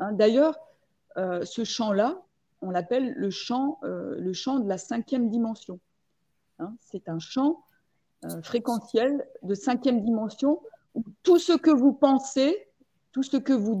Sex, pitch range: female, 210-275 Hz